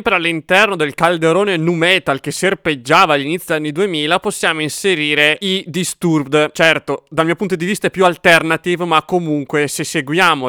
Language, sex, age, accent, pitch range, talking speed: English, male, 30-49, Italian, 150-195 Hz, 160 wpm